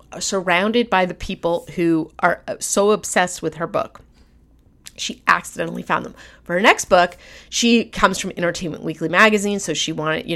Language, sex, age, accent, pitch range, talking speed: English, female, 30-49, American, 170-215 Hz, 170 wpm